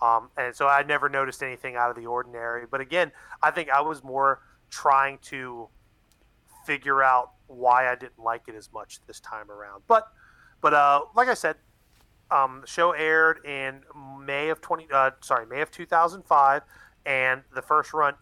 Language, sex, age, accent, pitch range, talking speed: English, male, 30-49, American, 120-150 Hz, 180 wpm